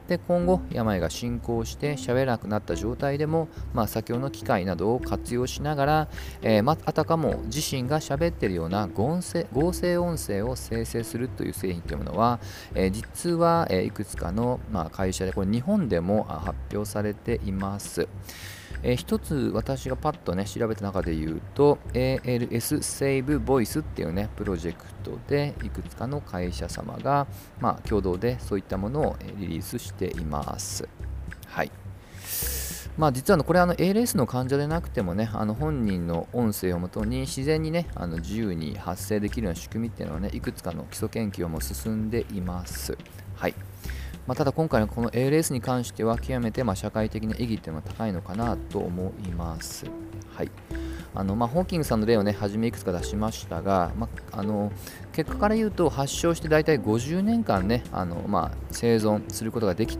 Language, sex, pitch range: Japanese, male, 95-130 Hz